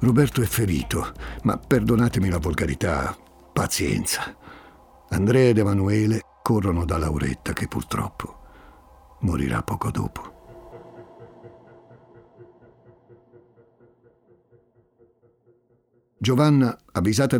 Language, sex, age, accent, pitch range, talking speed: Italian, male, 60-79, native, 90-120 Hz, 70 wpm